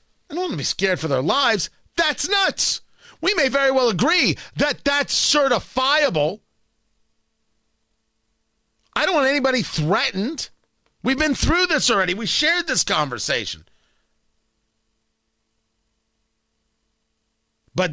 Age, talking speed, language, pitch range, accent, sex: 40-59, 115 wpm, English, 160-220 Hz, American, male